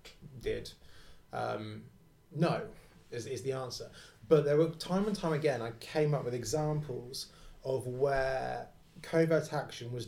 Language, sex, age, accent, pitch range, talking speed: English, male, 20-39, British, 120-150 Hz, 145 wpm